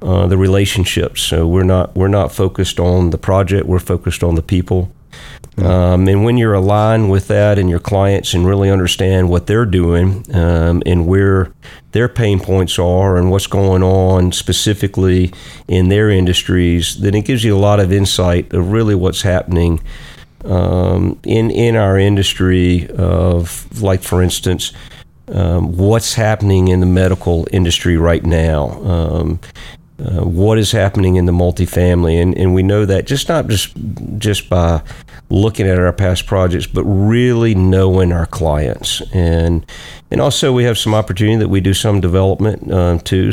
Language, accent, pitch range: English, American, 90-100 Hz